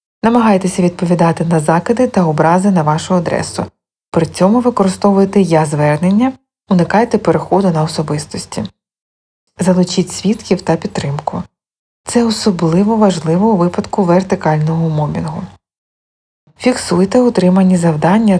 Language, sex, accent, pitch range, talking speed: Ukrainian, female, native, 160-210 Hz, 100 wpm